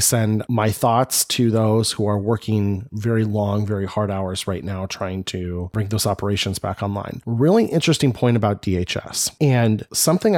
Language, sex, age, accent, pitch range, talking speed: English, male, 30-49, American, 105-130 Hz, 170 wpm